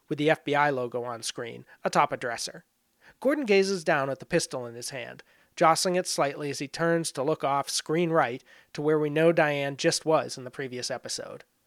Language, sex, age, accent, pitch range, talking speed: English, male, 30-49, American, 140-175 Hz, 205 wpm